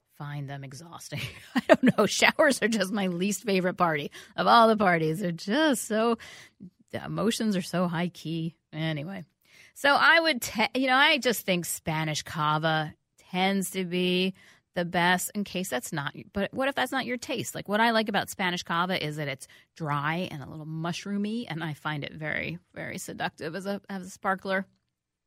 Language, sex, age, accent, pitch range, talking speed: English, female, 30-49, American, 155-195 Hz, 190 wpm